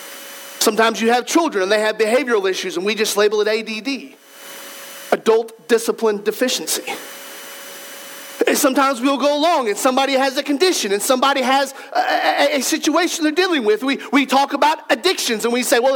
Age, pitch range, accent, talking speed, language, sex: 40-59, 230-285 Hz, American, 175 wpm, English, male